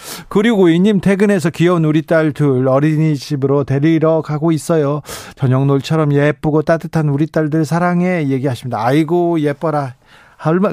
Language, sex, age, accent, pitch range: Korean, male, 40-59, native, 135-175 Hz